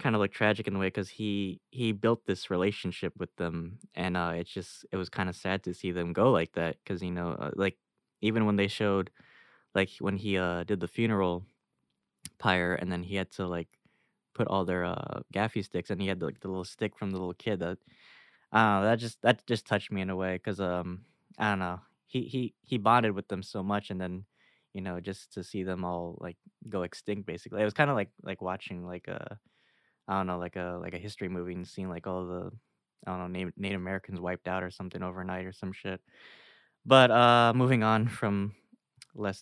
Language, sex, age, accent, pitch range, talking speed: English, male, 10-29, American, 90-105 Hz, 230 wpm